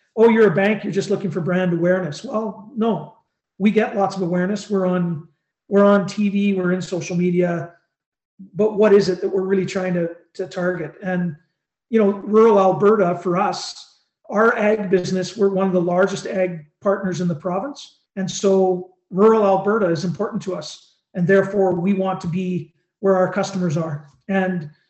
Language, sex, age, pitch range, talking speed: English, male, 40-59, 180-200 Hz, 185 wpm